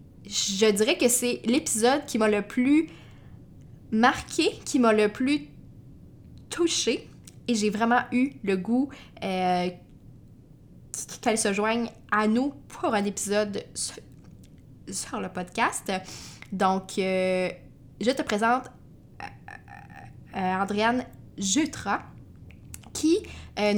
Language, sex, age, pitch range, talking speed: French, female, 20-39, 195-250 Hz, 115 wpm